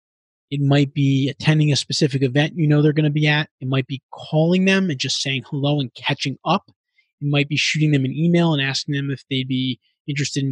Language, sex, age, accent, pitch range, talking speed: English, male, 20-39, American, 135-165 Hz, 235 wpm